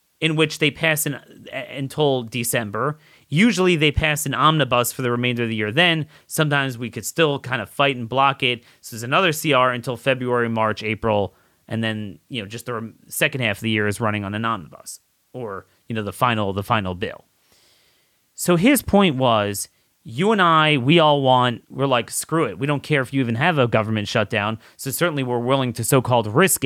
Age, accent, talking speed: 30-49, American, 205 wpm